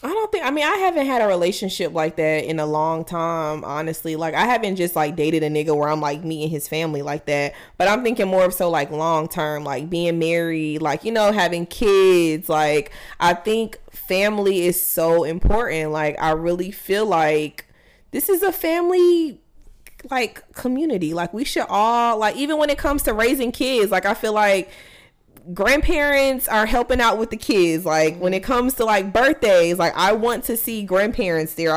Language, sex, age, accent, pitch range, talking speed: English, female, 20-39, American, 165-225 Hz, 200 wpm